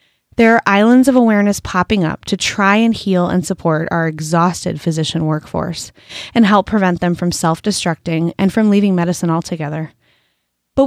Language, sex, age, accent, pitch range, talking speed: English, female, 20-39, American, 175-225 Hz, 160 wpm